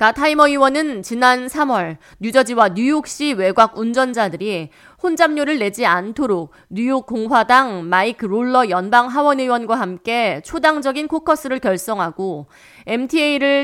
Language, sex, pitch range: Korean, female, 195-280 Hz